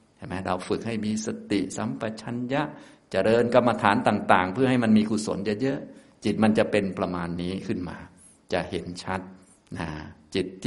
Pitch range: 95-110 Hz